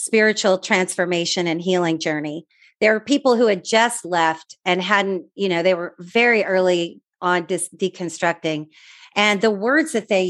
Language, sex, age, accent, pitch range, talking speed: English, female, 40-59, American, 170-210 Hz, 155 wpm